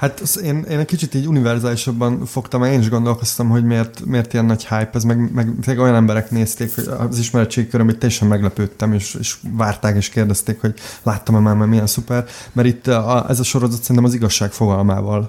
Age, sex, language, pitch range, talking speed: 20-39, male, Hungarian, 105-120 Hz, 185 wpm